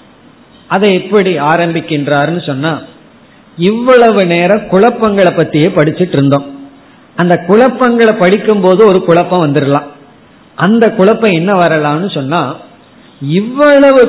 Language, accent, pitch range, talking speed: Tamil, native, 160-220 Hz, 80 wpm